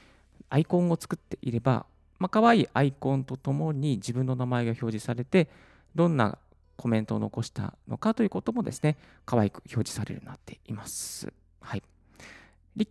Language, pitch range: Japanese, 105-155 Hz